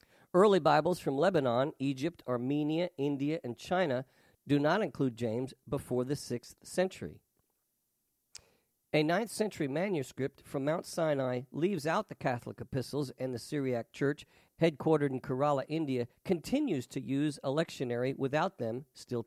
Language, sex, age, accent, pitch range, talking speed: English, male, 50-69, American, 130-170 Hz, 140 wpm